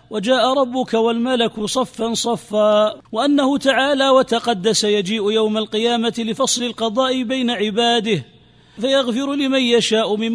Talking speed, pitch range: 110 wpm, 225-260 Hz